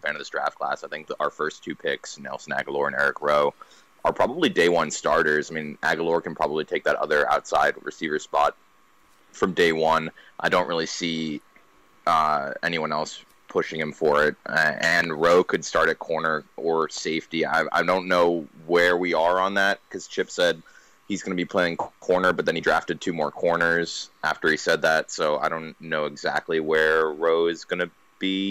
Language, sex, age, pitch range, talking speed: English, male, 20-39, 80-95 Hz, 200 wpm